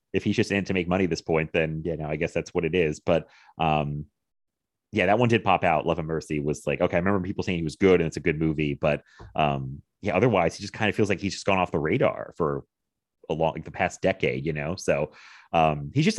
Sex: male